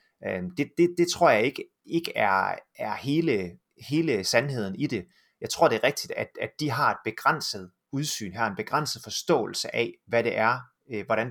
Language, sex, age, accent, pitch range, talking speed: Danish, male, 30-49, native, 105-140 Hz, 185 wpm